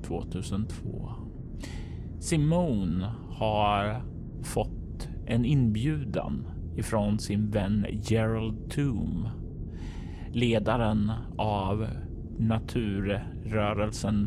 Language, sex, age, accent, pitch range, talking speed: Swedish, male, 30-49, native, 100-120 Hz, 55 wpm